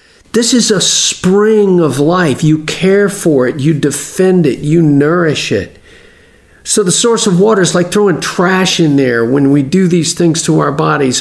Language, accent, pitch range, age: English, American, 130-170 Hz, 50-69